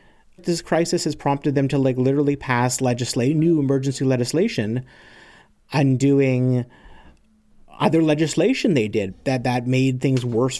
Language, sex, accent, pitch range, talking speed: English, male, American, 120-145 Hz, 130 wpm